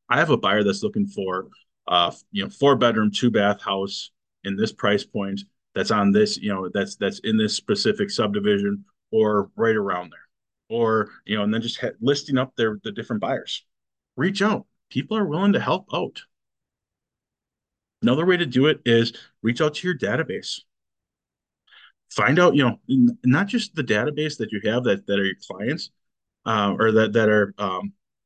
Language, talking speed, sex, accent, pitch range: English, 185 wpm, male, American, 105-160 Hz